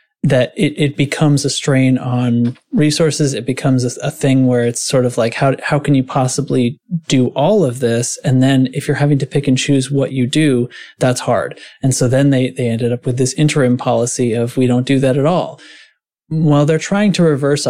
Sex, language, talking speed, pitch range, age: male, English, 215 wpm, 120-140 Hz, 30-49